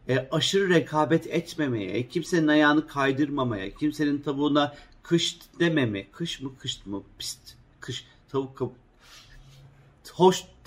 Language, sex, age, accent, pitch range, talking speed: Turkish, male, 50-69, native, 130-155 Hz, 110 wpm